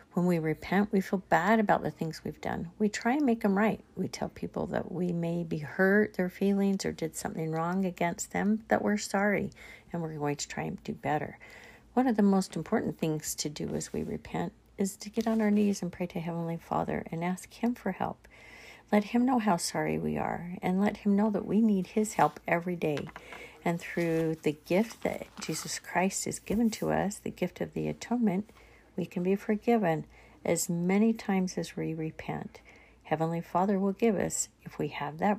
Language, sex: English, female